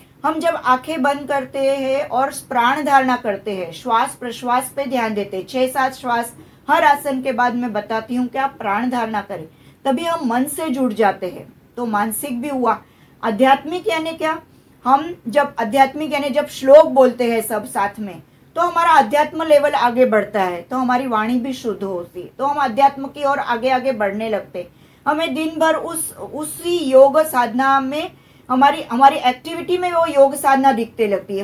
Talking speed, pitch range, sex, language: 130 wpm, 220-285 Hz, female, English